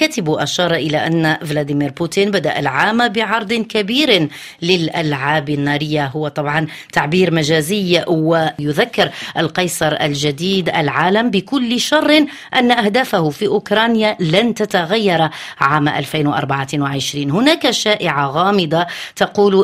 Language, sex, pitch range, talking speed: Arabic, female, 150-210 Hz, 105 wpm